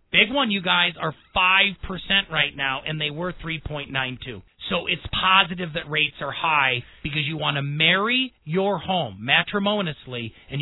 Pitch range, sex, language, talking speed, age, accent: 155-205 Hz, male, English, 160 wpm, 40-59, American